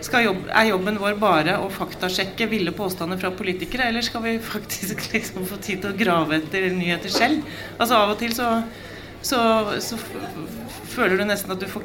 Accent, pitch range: Swedish, 180-215 Hz